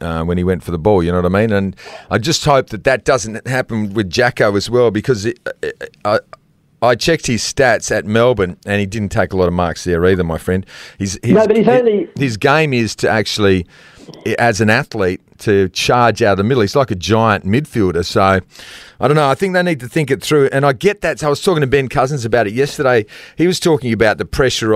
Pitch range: 100-135 Hz